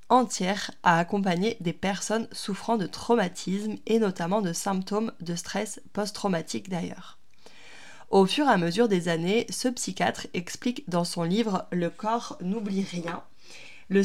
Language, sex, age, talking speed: French, female, 20-39, 145 wpm